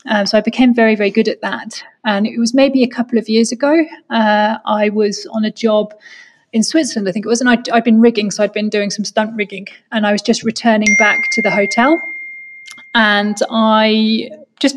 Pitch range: 210-240 Hz